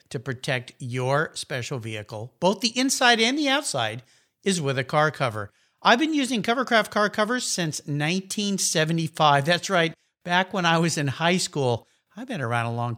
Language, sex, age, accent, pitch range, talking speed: English, male, 50-69, American, 145-225 Hz, 175 wpm